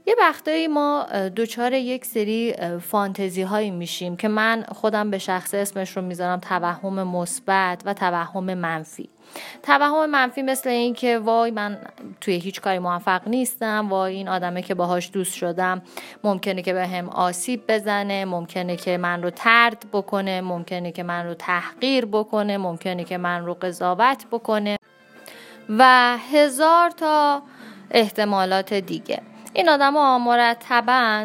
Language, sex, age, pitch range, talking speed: Persian, female, 30-49, 180-230 Hz, 140 wpm